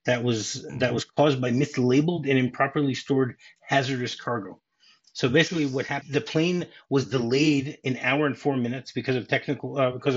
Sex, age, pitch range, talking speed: male, 30-49, 120-145 Hz, 175 wpm